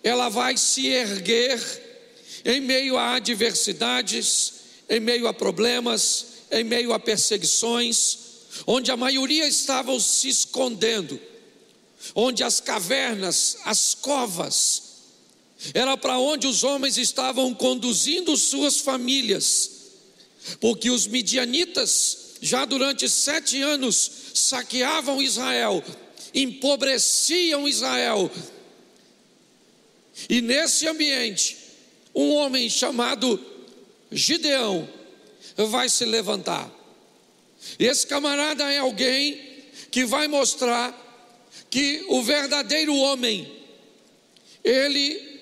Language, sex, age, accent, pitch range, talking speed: Portuguese, male, 50-69, Brazilian, 240-280 Hz, 90 wpm